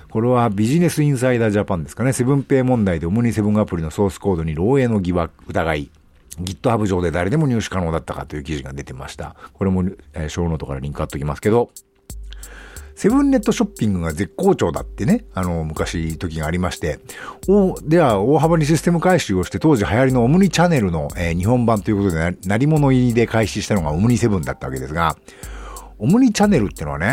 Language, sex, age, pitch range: Japanese, male, 50-69, 85-135 Hz